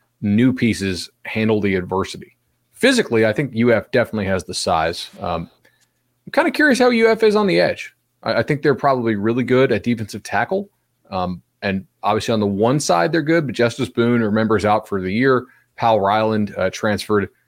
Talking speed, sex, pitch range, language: 190 wpm, male, 105-135 Hz, English